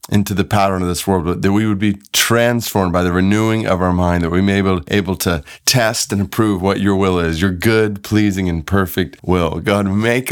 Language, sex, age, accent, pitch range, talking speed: English, male, 30-49, American, 90-105 Hz, 225 wpm